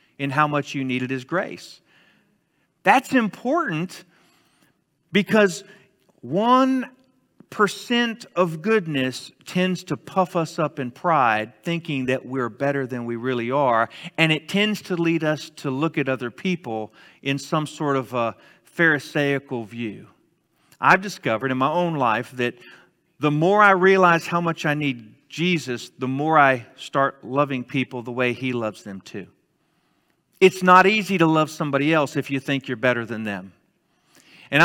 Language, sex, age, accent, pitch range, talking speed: English, male, 50-69, American, 130-185 Hz, 155 wpm